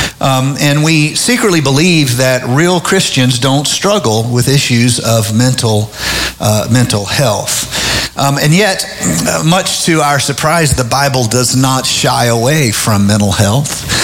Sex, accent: male, American